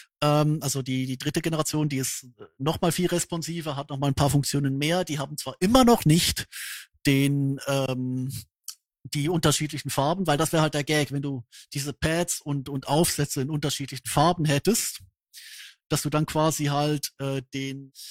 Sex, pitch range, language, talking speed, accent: male, 135-160 Hz, German, 175 wpm, German